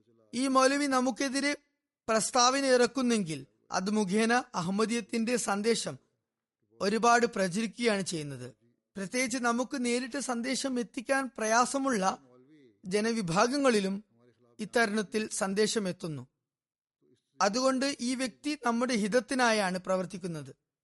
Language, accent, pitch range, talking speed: Malayalam, native, 180-245 Hz, 80 wpm